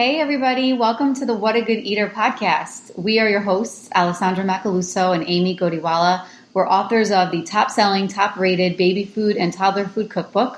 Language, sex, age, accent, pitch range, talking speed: English, female, 30-49, American, 180-225 Hz, 175 wpm